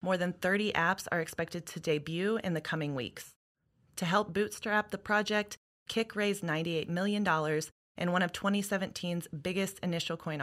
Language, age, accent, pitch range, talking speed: English, 20-39, American, 165-200 Hz, 160 wpm